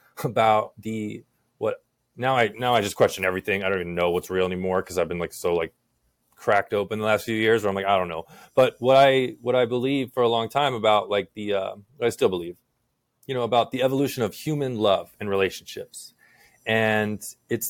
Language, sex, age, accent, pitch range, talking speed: English, male, 20-39, American, 105-125 Hz, 220 wpm